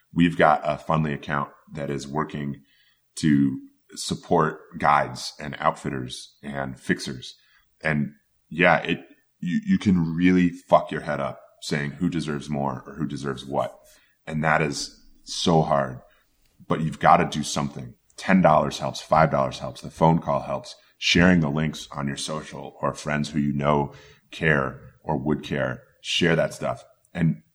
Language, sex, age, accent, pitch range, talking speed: English, male, 30-49, American, 70-80 Hz, 160 wpm